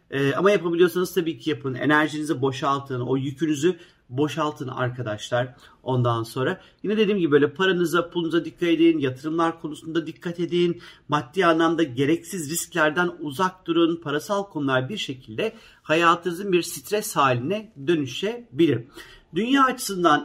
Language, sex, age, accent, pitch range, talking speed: Turkish, male, 50-69, native, 130-180 Hz, 125 wpm